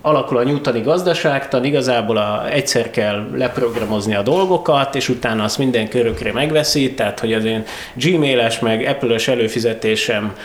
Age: 30-49